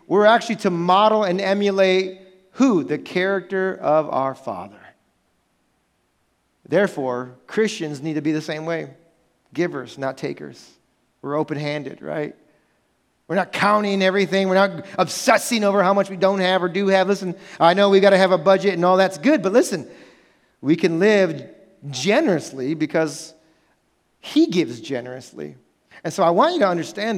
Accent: American